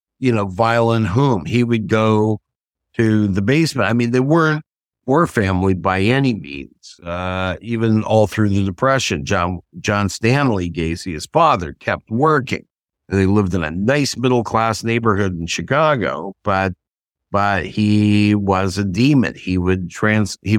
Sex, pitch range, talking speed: male, 95-120 Hz, 155 wpm